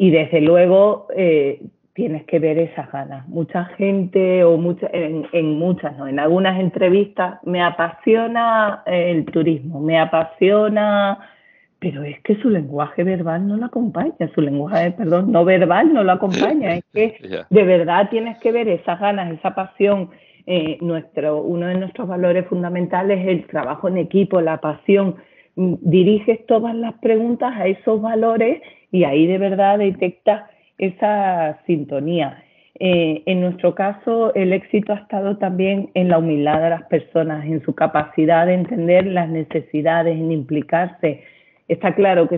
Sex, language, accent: female, Spanish, Spanish